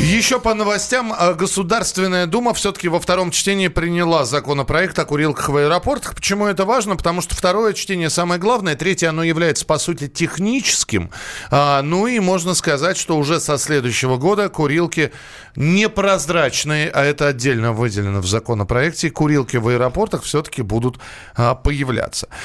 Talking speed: 145 wpm